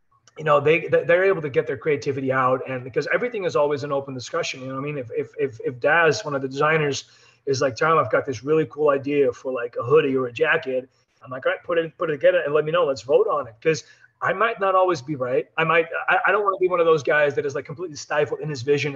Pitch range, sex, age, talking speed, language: 140-180 Hz, male, 30-49, 290 wpm, English